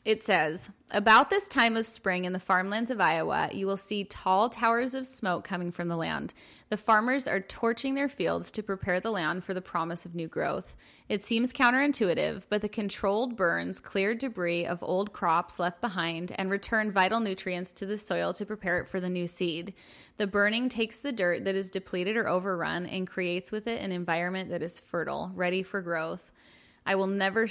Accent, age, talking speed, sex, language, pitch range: American, 20-39, 200 wpm, female, English, 180-210 Hz